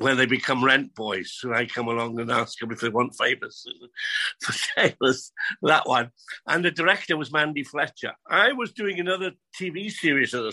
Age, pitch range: 60-79, 135-175 Hz